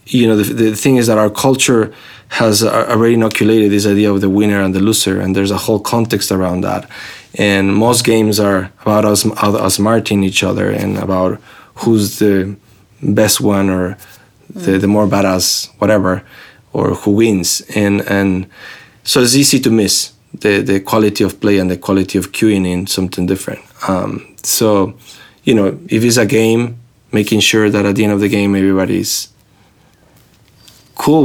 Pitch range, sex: 95-110 Hz, male